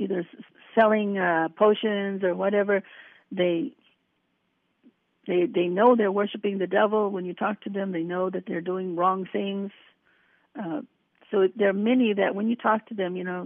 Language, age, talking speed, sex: English, 60-79, 175 wpm, female